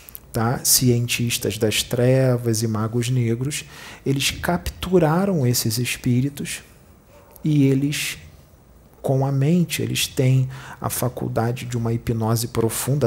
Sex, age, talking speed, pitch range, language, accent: male, 40-59, 105 wpm, 110-130 Hz, Portuguese, Brazilian